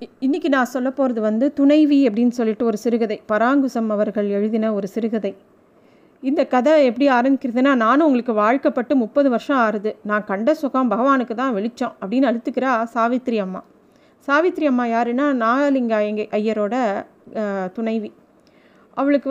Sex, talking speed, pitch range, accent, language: female, 135 wpm, 225-280 Hz, native, Tamil